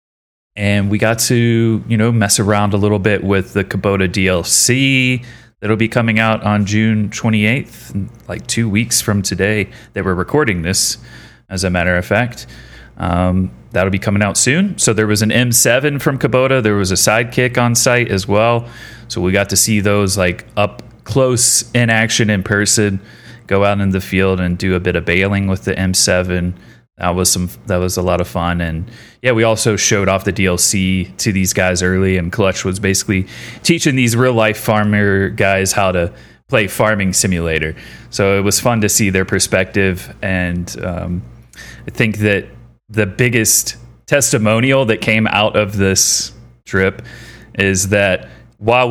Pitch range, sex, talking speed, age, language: 95-115 Hz, male, 180 wpm, 30-49, English